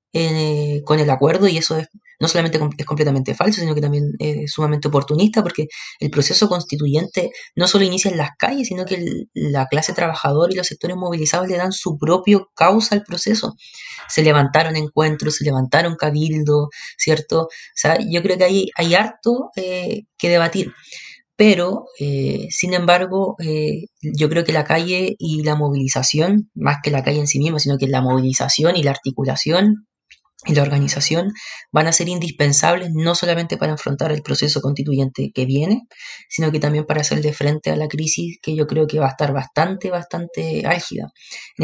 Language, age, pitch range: Spanish, 20-39, 150-180 Hz